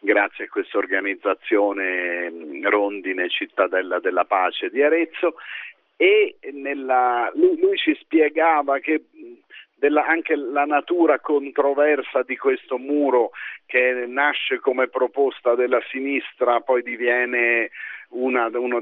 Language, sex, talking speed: Italian, male, 100 wpm